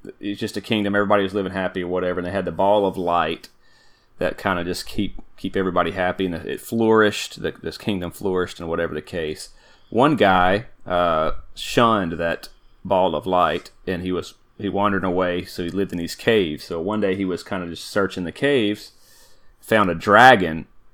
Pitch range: 85-100 Hz